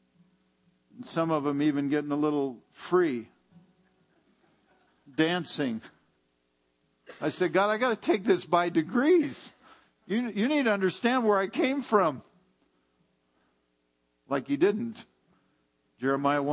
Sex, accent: male, American